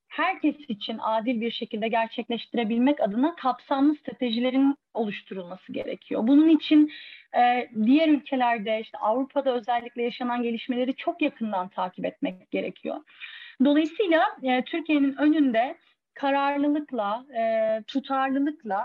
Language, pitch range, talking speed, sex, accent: Turkish, 235-290 Hz, 105 wpm, female, native